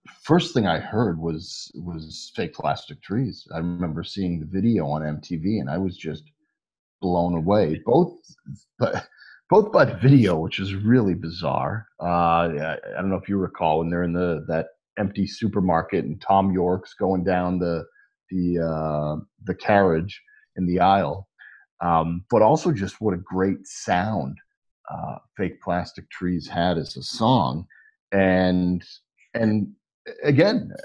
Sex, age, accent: male, 40-59, American